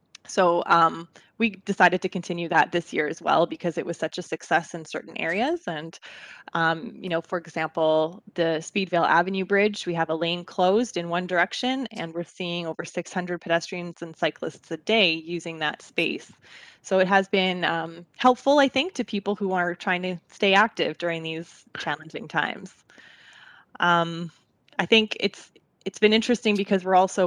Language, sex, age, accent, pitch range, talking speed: English, female, 20-39, American, 165-195 Hz, 180 wpm